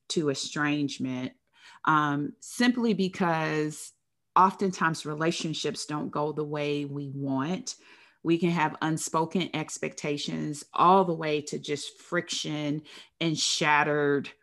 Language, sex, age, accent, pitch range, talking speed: English, female, 30-49, American, 145-175 Hz, 110 wpm